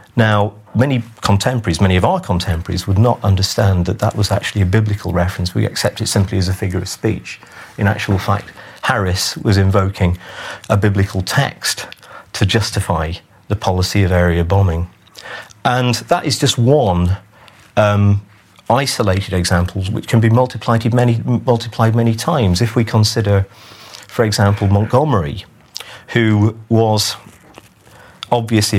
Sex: male